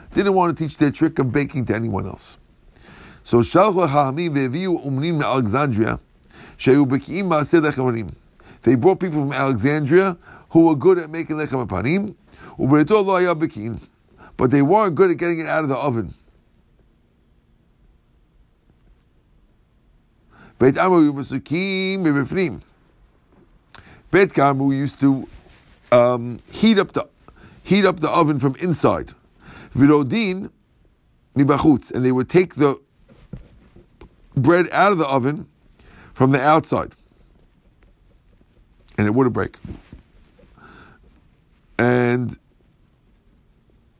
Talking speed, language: 90 wpm, English